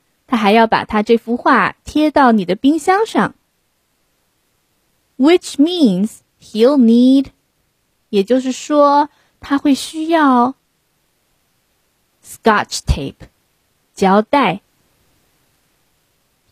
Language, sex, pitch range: Chinese, female, 190-285 Hz